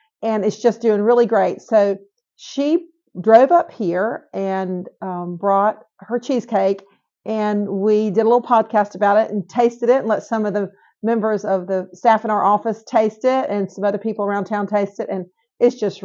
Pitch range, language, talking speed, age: 190-235 Hz, English, 195 wpm, 50-69